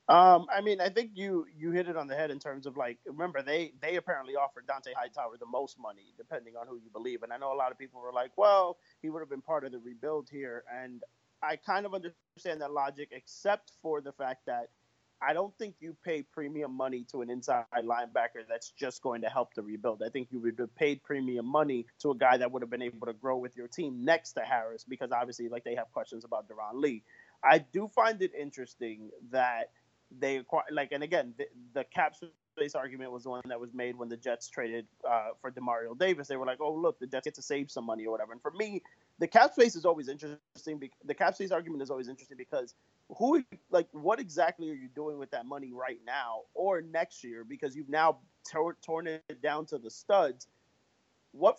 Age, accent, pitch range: 30-49, American, 125-170 Hz